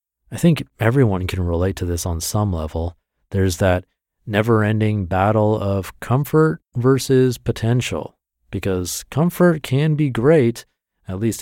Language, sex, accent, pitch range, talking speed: English, male, American, 90-125 Hz, 130 wpm